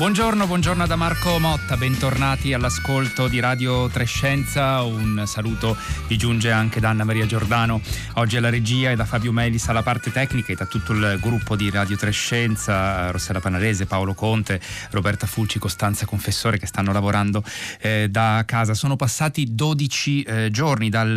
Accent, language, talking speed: native, Italian, 160 wpm